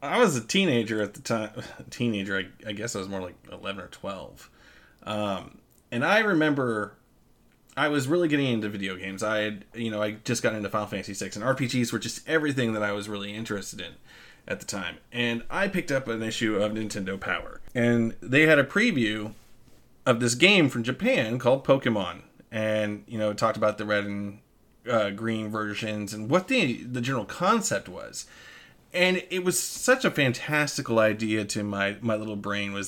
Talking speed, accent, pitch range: 195 wpm, American, 105-140 Hz